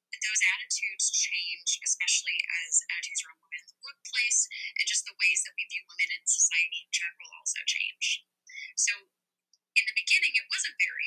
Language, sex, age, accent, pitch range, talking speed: English, female, 10-29, American, 180-295 Hz, 175 wpm